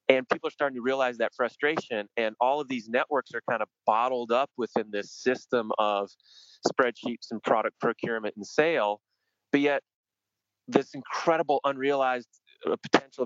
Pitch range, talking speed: 110-155 Hz, 155 wpm